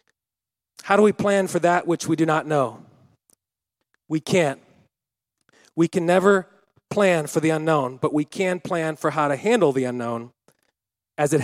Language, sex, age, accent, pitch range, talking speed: English, male, 40-59, American, 140-185 Hz, 170 wpm